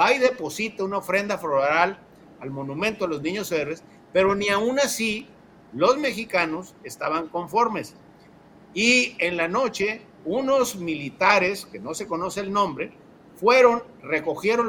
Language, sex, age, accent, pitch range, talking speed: Spanish, male, 50-69, Mexican, 175-230 Hz, 135 wpm